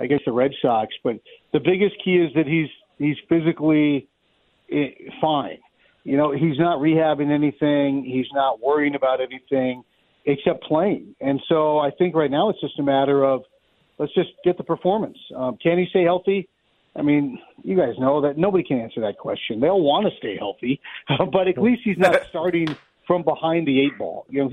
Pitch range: 145-175 Hz